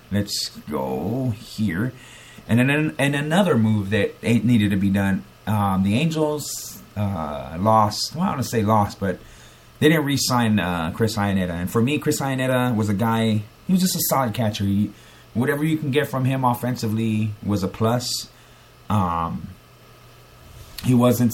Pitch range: 105-125 Hz